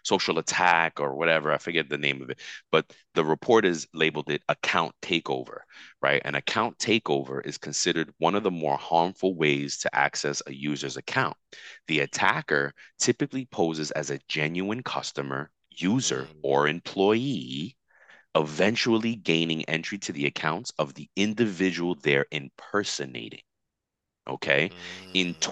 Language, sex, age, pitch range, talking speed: English, male, 30-49, 75-100 Hz, 140 wpm